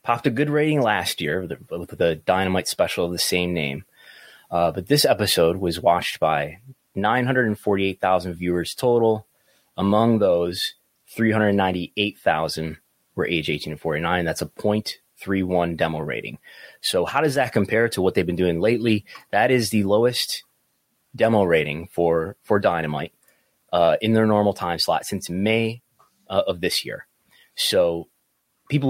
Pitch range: 85-115 Hz